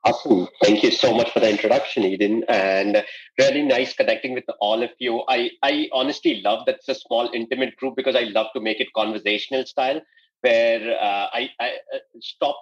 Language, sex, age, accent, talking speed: English, male, 30-49, Indian, 190 wpm